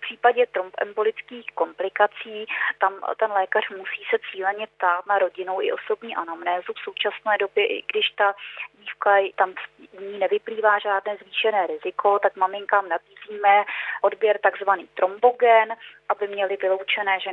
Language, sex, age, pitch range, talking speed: Czech, female, 20-39, 185-215 Hz, 140 wpm